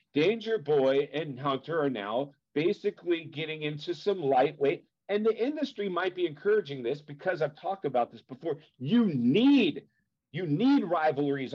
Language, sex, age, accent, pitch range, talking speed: English, male, 50-69, American, 140-190 Hz, 145 wpm